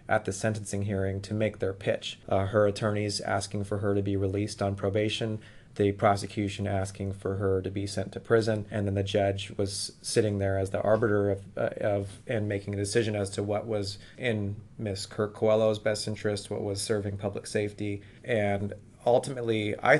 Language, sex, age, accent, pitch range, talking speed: English, male, 30-49, American, 100-110 Hz, 190 wpm